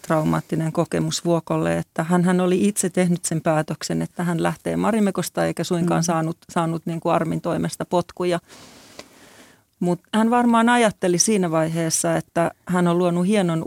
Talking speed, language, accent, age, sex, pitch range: 140 wpm, Finnish, native, 30-49, female, 160-180 Hz